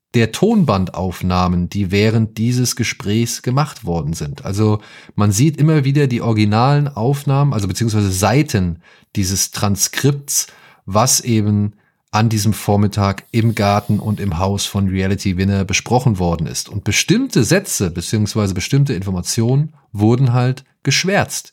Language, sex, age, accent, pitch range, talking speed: German, male, 30-49, German, 100-125 Hz, 130 wpm